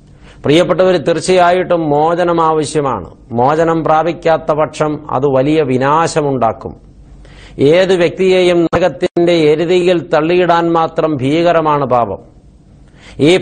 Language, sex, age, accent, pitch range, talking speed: Malayalam, male, 50-69, native, 145-170 Hz, 80 wpm